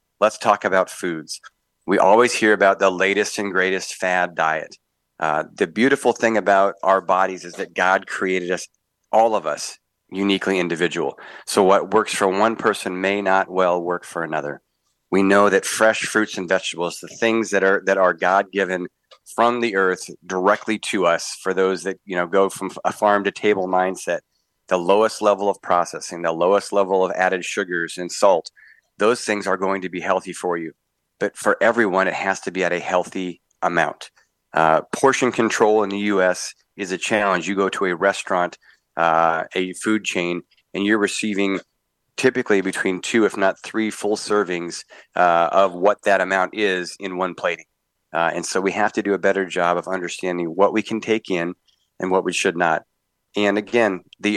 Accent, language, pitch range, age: American, English, 90-105 Hz, 30-49